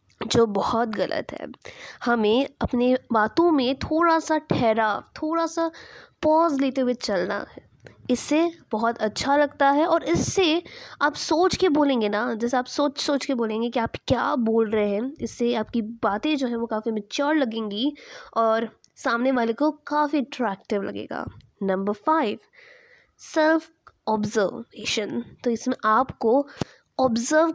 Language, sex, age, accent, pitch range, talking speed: English, female, 20-39, Indian, 230-300 Hz, 125 wpm